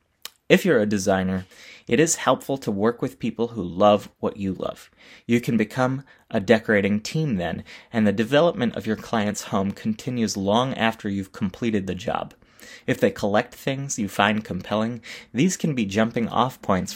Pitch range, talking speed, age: 100-125 Hz, 175 wpm, 20-39